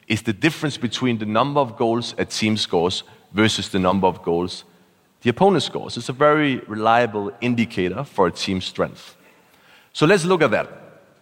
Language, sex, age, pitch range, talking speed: English, male, 40-59, 100-135 Hz, 175 wpm